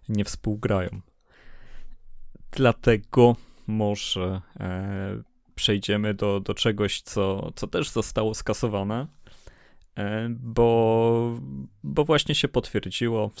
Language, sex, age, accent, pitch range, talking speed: Polish, male, 20-39, native, 105-115 Hz, 95 wpm